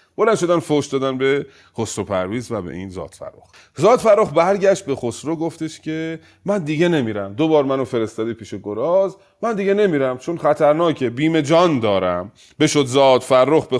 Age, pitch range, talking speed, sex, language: 30-49, 105-165 Hz, 150 wpm, male, Persian